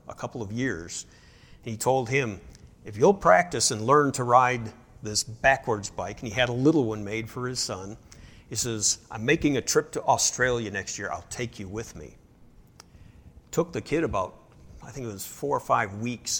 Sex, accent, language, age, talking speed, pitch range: male, American, English, 60-79, 200 wpm, 105-125 Hz